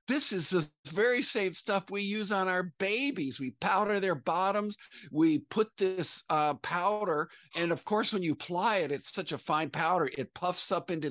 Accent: American